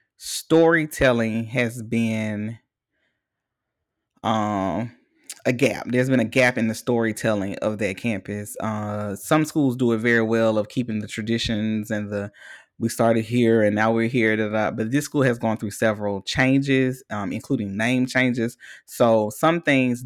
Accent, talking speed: American, 155 wpm